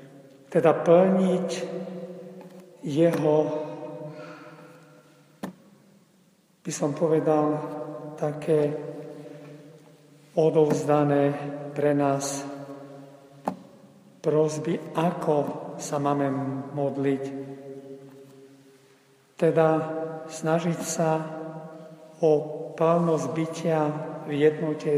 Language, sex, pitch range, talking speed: Slovak, male, 140-160 Hz, 55 wpm